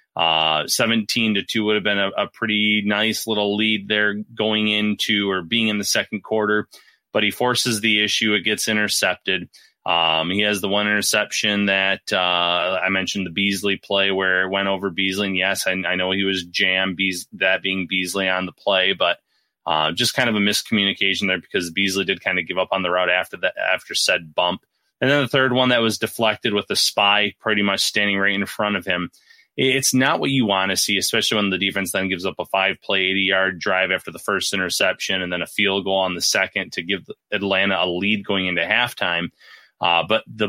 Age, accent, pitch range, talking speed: 30-49, American, 95-105 Hz, 215 wpm